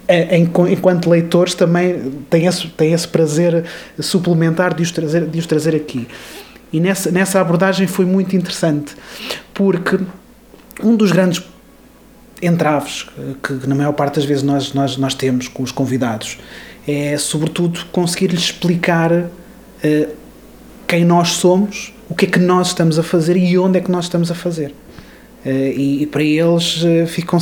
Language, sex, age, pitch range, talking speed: Portuguese, male, 20-39, 150-175 Hz, 160 wpm